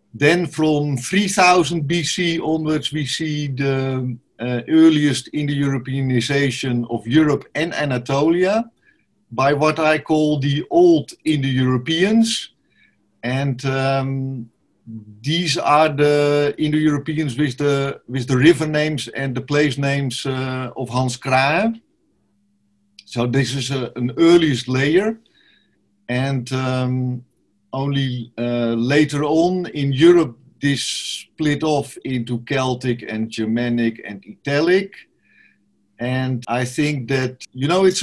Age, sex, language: 50-69, male, English